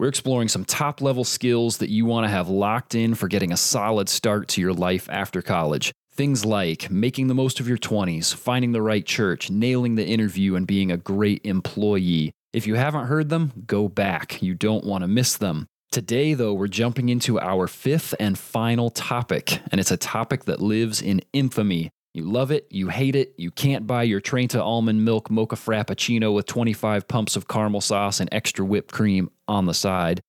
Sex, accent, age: male, American, 30-49